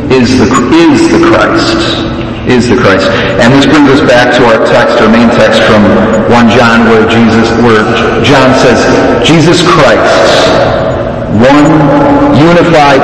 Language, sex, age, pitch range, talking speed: English, male, 40-59, 110-130 Hz, 145 wpm